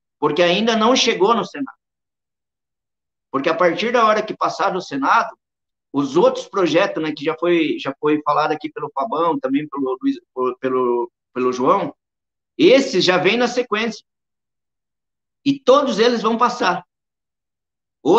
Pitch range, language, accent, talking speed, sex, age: 170-265 Hz, Portuguese, Brazilian, 150 wpm, male, 50-69